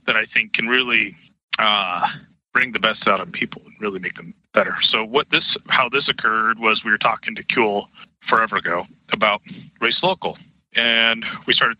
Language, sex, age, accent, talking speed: English, male, 30-49, American, 190 wpm